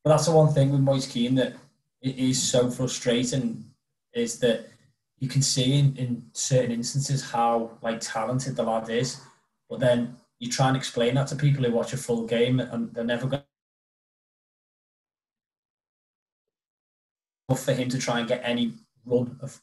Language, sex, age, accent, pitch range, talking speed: English, male, 20-39, British, 115-130 Hz, 170 wpm